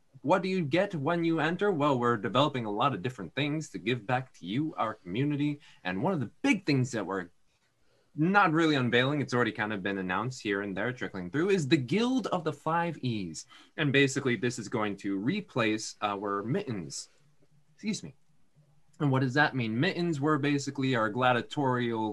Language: English